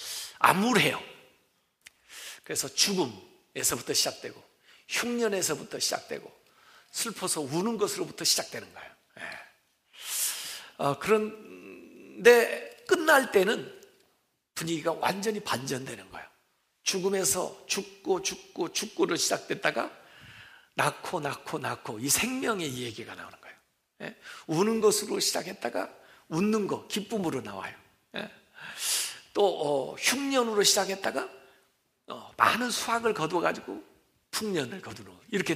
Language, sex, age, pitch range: Korean, male, 60-79, 160-230 Hz